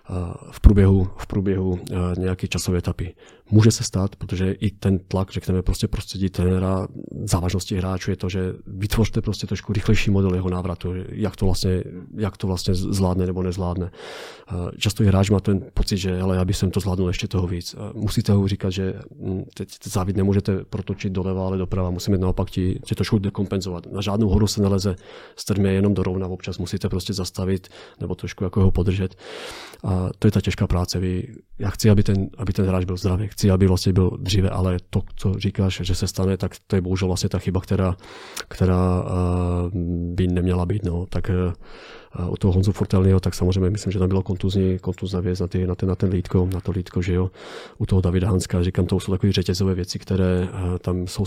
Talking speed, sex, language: 205 wpm, male, Czech